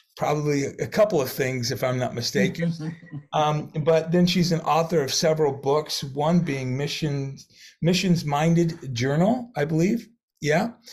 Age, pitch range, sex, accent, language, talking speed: 40-59, 120-155 Hz, male, American, English, 150 wpm